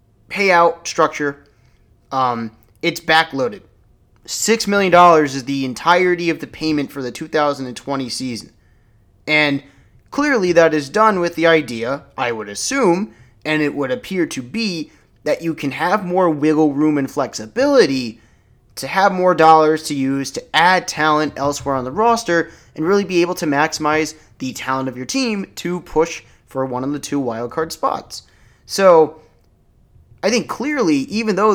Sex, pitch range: male, 130-185 Hz